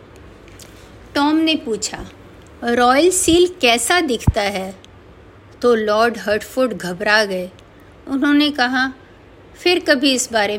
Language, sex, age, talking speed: Hindi, female, 50-69, 110 wpm